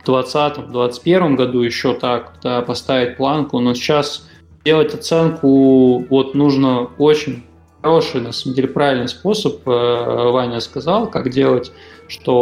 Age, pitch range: 20-39, 130-150 Hz